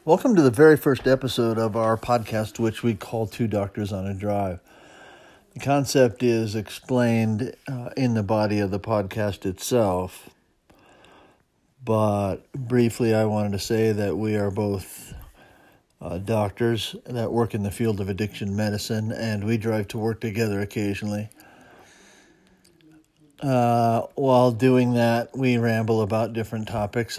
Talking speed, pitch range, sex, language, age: 145 wpm, 110-130 Hz, male, English, 50-69